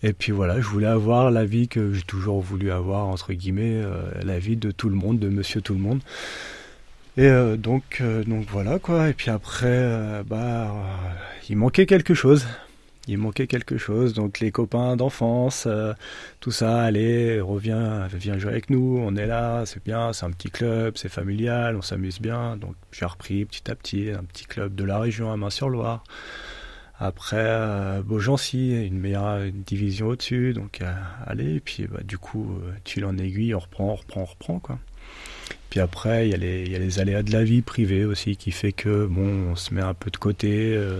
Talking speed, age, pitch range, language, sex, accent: 210 wpm, 30-49, 95-115 Hz, French, male, French